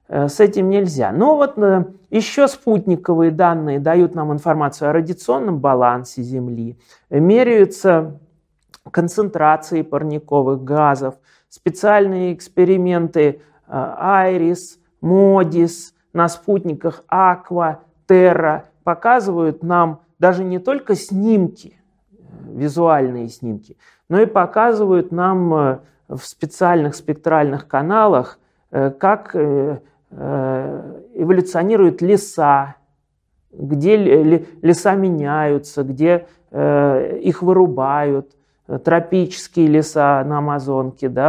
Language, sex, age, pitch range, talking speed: Russian, male, 40-59, 140-185 Hz, 85 wpm